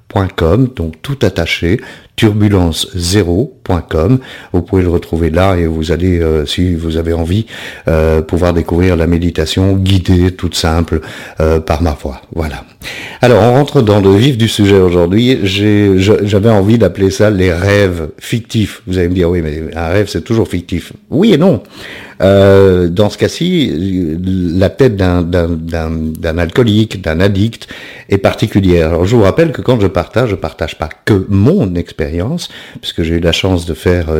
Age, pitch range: 50-69, 85-105 Hz